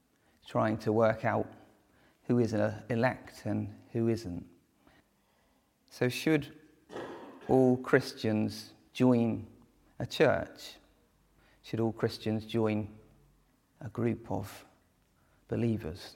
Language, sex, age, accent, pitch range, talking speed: English, male, 40-59, British, 110-120 Hz, 95 wpm